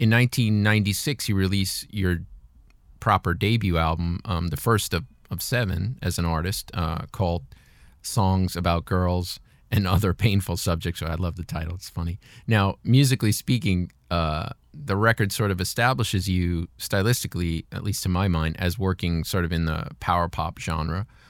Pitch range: 85-105 Hz